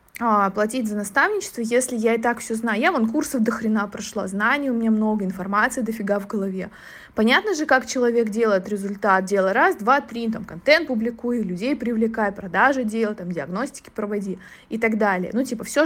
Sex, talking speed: female, 185 wpm